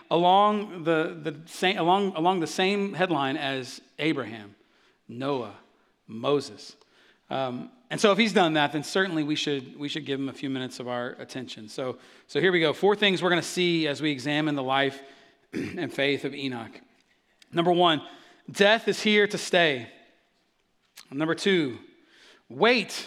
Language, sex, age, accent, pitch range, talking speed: English, male, 30-49, American, 145-190 Hz, 165 wpm